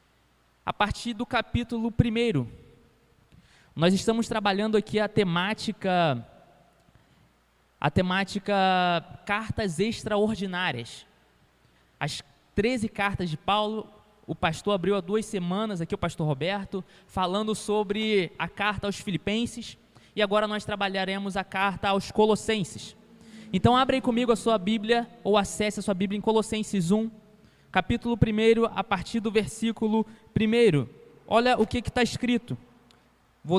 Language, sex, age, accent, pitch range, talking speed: Portuguese, male, 20-39, Brazilian, 190-225 Hz, 125 wpm